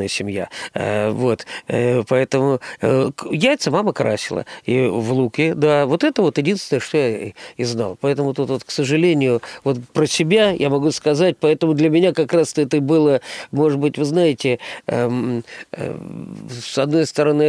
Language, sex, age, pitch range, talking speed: Russian, male, 40-59, 120-150 Hz, 150 wpm